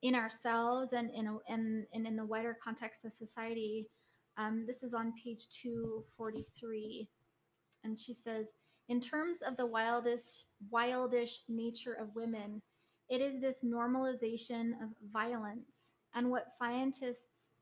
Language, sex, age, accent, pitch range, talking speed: English, female, 20-39, American, 225-250 Hz, 135 wpm